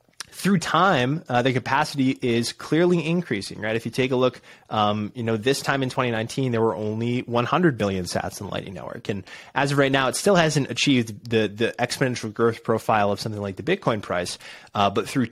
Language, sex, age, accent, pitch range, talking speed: English, male, 20-39, American, 110-145 Hz, 210 wpm